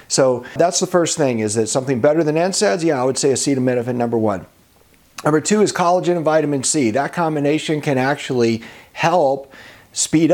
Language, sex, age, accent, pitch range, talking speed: English, male, 40-59, American, 115-165 Hz, 180 wpm